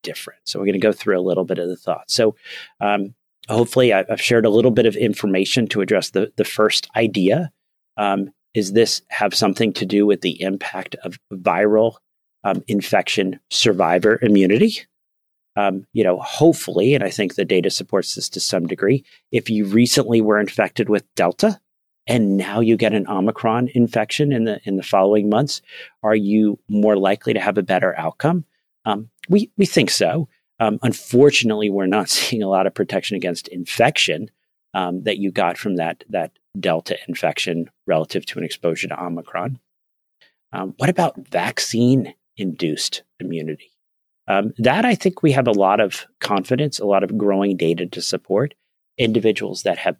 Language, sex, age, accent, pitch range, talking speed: English, male, 40-59, American, 100-120 Hz, 175 wpm